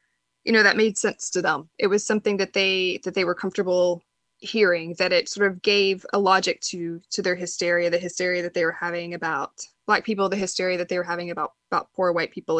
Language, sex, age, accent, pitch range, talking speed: English, female, 20-39, American, 180-220 Hz, 230 wpm